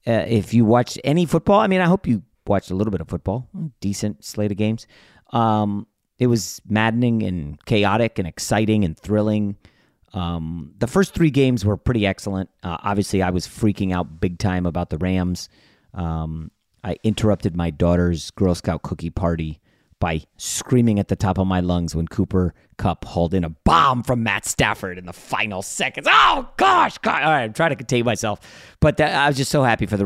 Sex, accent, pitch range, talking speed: male, American, 95-130 Hz, 195 wpm